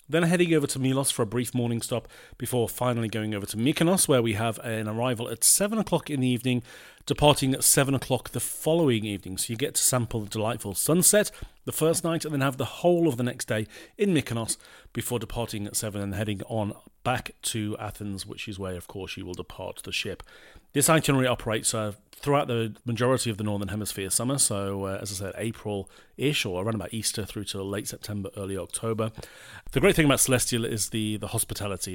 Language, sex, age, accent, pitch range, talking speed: English, male, 40-59, British, 105-125 Hz, 210 wpm